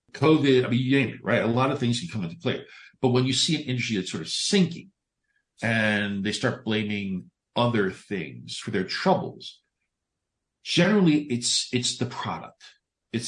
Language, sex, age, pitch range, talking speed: English, male, 50-69, 105-140 Hz, 180 wpm